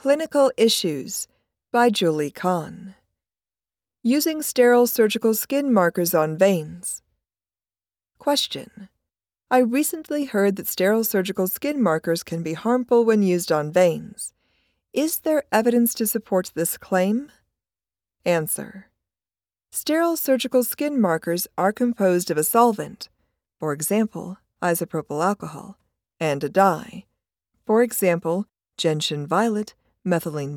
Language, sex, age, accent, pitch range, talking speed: English, female, 40-59, American, 160-240 Hz, 110 wpm